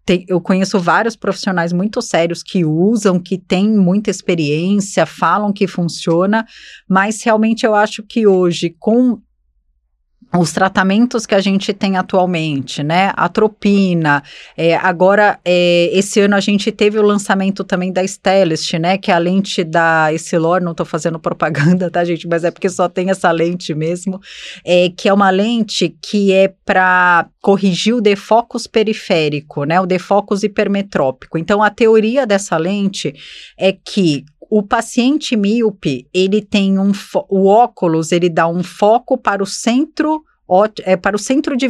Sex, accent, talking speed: female, Brazilian, 160 wpm